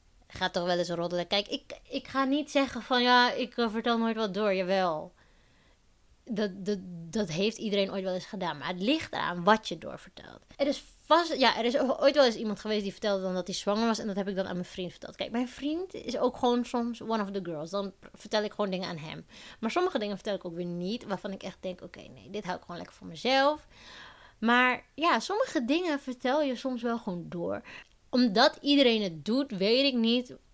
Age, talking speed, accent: 20-39, 225 wpm, Dutch